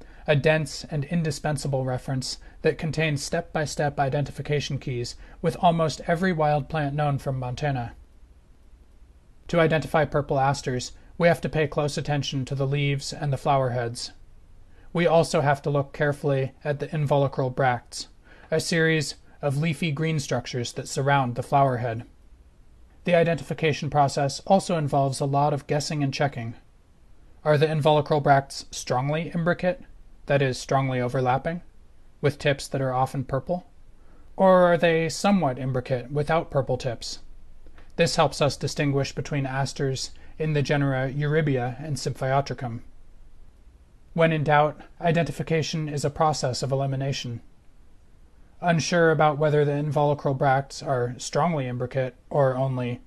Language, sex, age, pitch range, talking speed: English, male, 30-49, 130-155 Hz, 140 wpm